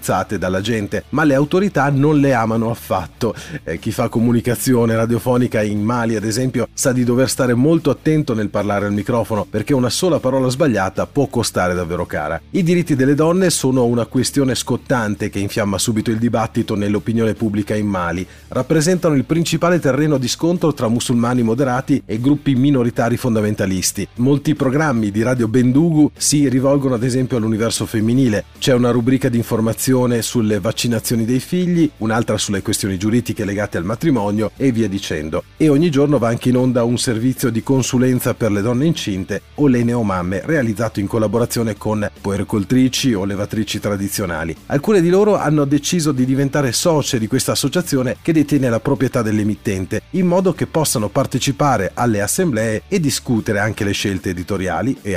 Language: Italian